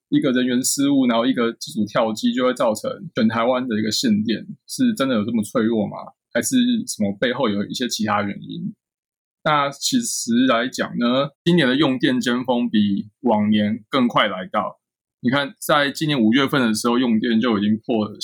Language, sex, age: Chinese, male, 20-39